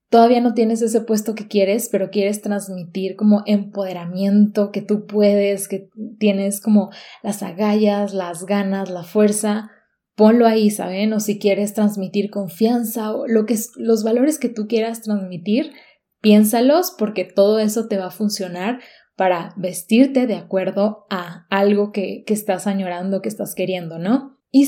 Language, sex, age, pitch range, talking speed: Spanish, female, 20-39, 195-225 Hz, 150 wpm